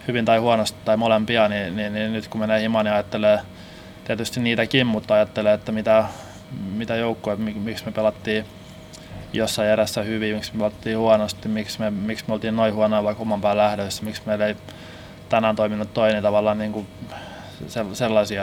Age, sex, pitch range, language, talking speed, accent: 20-39, male, 105-115 Hz, Finnish, 175 wpm, native